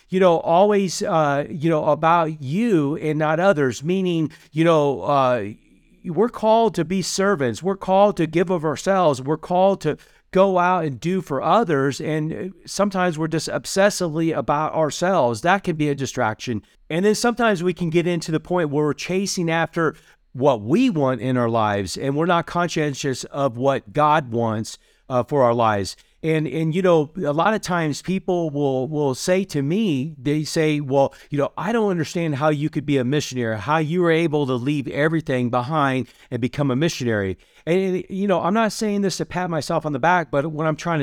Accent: American